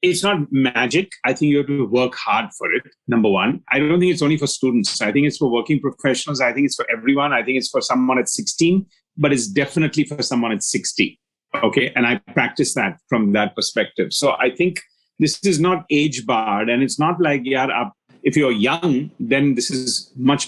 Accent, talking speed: native, 225 wpm